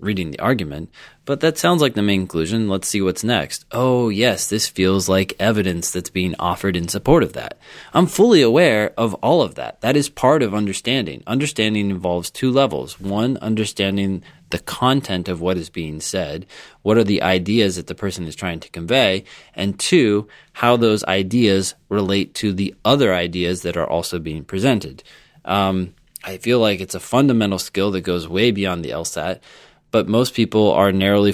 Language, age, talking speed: English, 20-39, 185 wpm